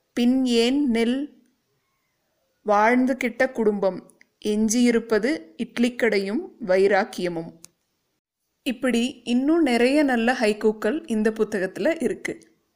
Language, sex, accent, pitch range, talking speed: Tamil, female, native, 215-270 Hz, 75 wpm